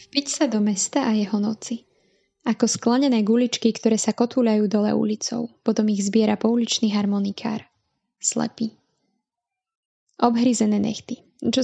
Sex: female